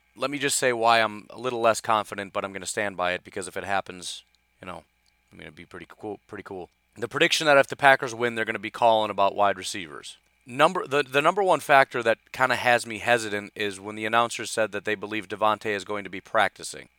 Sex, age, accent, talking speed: male, 30-49, American, 255 wpm